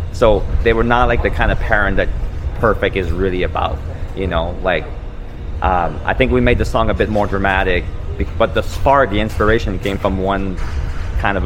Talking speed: 200 wpm